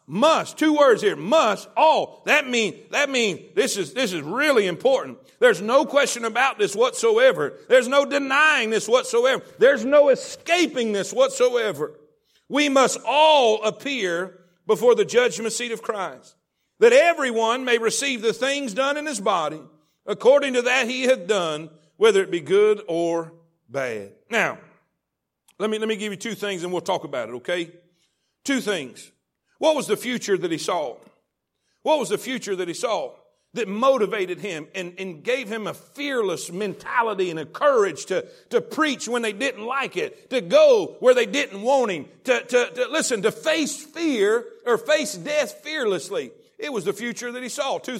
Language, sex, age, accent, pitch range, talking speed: English, male, 50-69, American, 215-345 Hz, 180 wpm